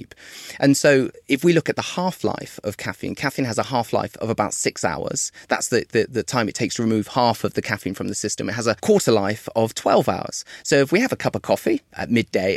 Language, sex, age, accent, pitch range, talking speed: English, male, 30-49, British, 105-140 Hz, 245 wpm